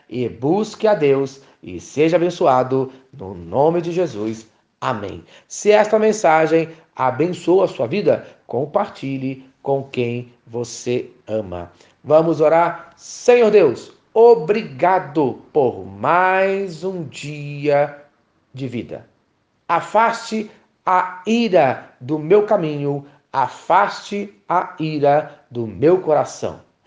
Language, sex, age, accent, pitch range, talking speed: Portuguese, male, 40-59, Brazilian, 130-190 Hz, 105 wpm